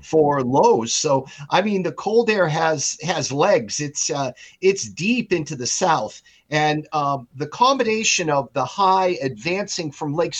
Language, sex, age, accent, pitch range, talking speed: English, male, 50-69, American, 145-185 Hz, 160 wpm